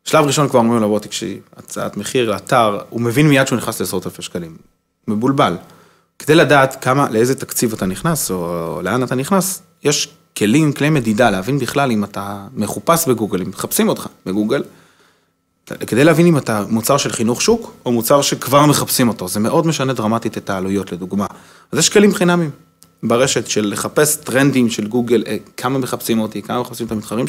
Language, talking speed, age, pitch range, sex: Hebrew, 180 wpm, 30-49, 110-150 Hz, male